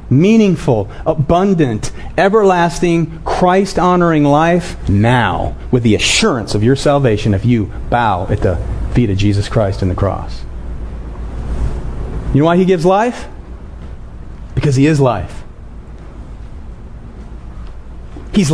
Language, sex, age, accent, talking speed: English, male, 40-59, American, 115 wpm